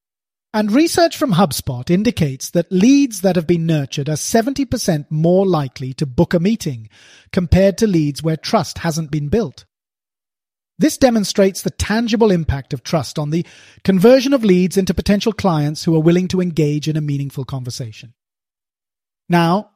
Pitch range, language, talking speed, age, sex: 150-210 Hz, English, 160 wpm, 30-49, male